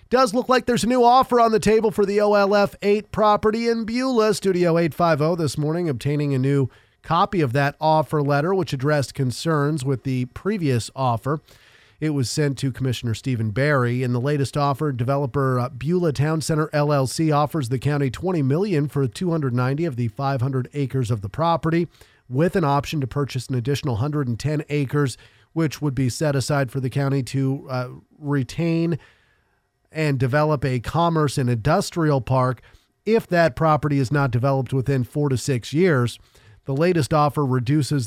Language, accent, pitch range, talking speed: English, American, 130-155 Hz, 170 wpm